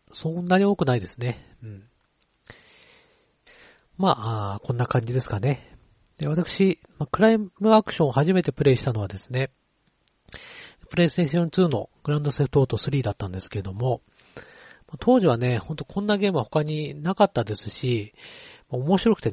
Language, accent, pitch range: Japanese, native, 110-165 Hz